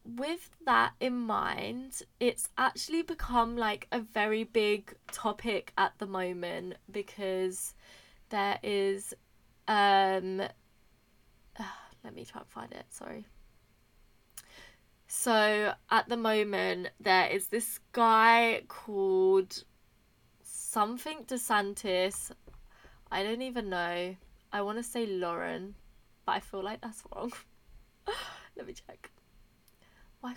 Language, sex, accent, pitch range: English, female, British, 190-240 Hz